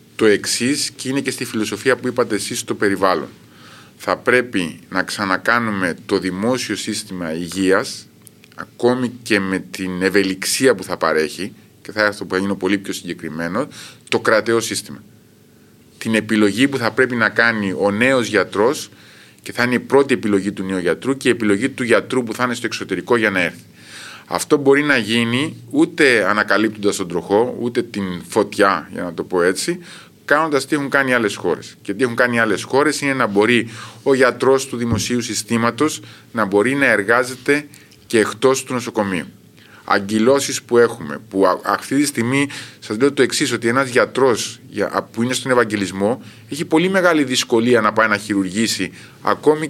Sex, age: male, 30-49